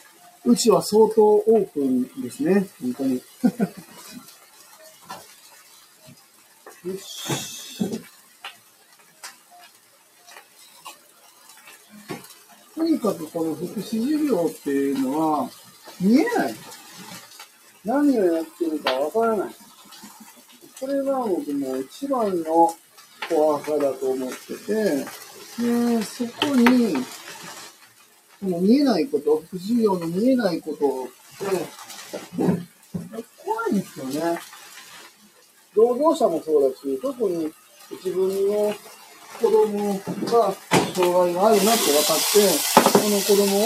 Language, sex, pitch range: Japanese, male, 165-240 Hz